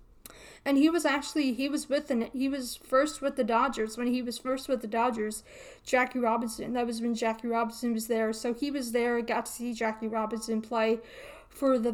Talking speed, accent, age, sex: 210 wpm, American, 20-39, female